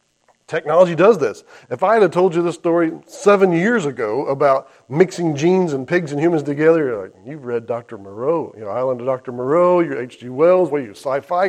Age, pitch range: 40-59, 125-175 Hz